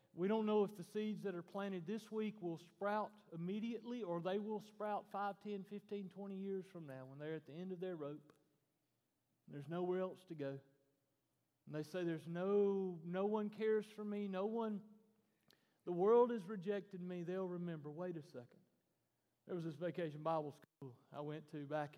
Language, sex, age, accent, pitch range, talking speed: English, male, 40-59, American, 150-200 Hz, 190 wpm